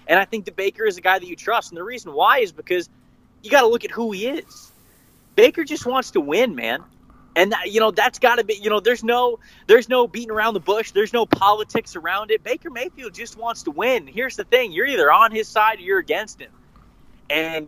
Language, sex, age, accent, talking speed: English, male, 20-39, American, 250 wpm